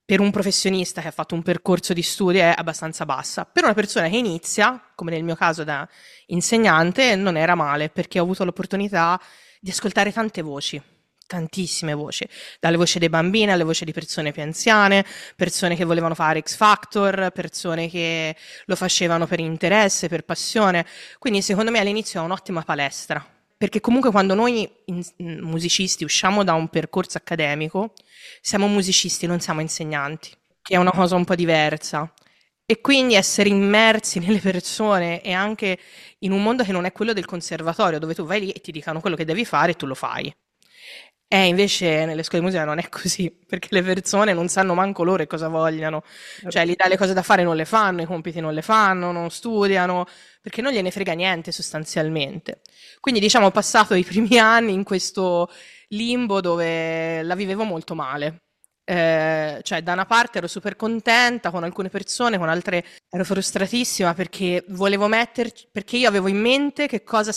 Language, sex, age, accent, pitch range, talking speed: Italian, female, 20-39, native, 165-205 Hz, 180 wpm